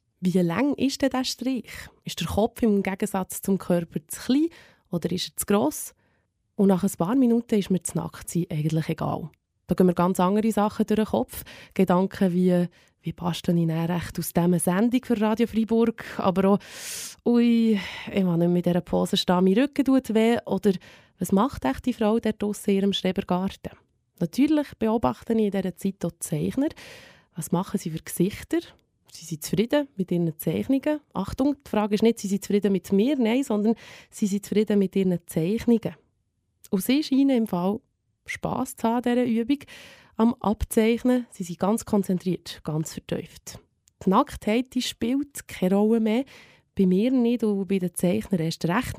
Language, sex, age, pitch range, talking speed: German, female, 20-39, 180-230 Hz, 180 wpm